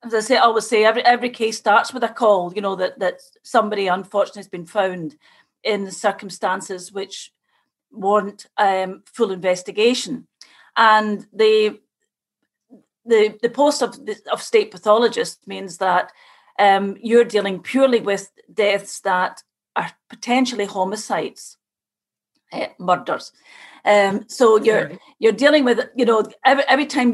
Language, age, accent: English, 40-59, British